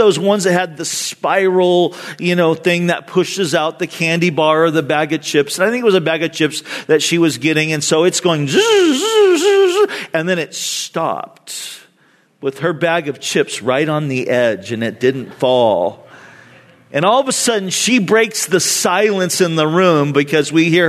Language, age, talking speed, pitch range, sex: English, 40-59, 210 wpm, 160-210 Hz, male